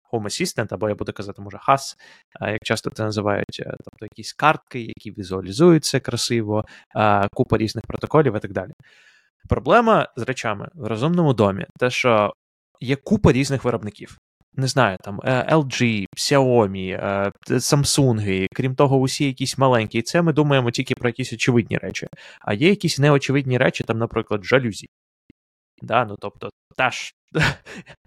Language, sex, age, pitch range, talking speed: Ukrainian, male, 20-39, 110-150 Hz, 150 wpm